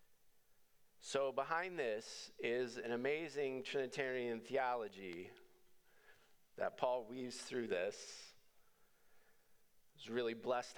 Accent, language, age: American, English, 40-59